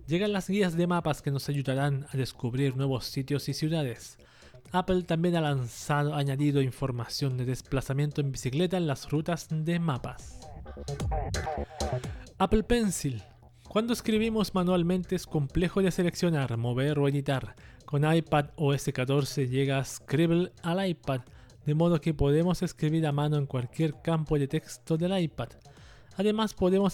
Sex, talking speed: male, 150 wpm